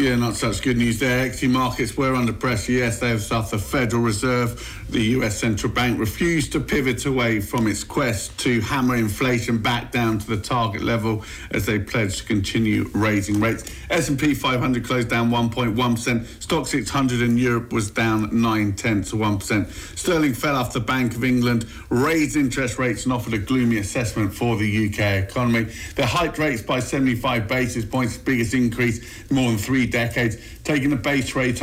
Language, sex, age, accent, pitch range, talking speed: English, male, 50-69, British, 110-130 Hz, 180 wpm